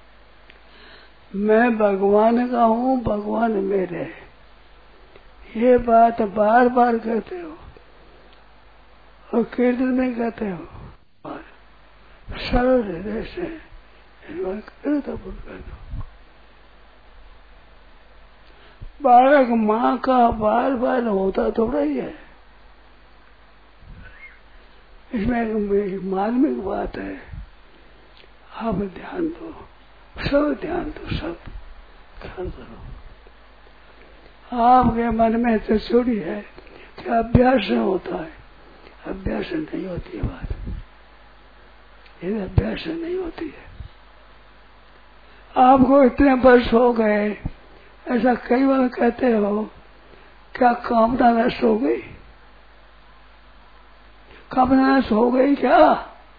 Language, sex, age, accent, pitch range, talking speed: Hindi, male, 60-79, native, 225-265 Hz, 85 wpm